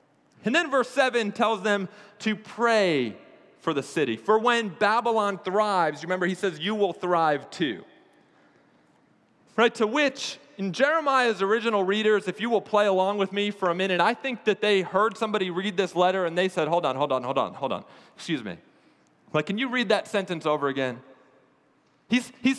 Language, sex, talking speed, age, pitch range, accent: English, male, 190 wpm, 30-49, 195-255 Hz, American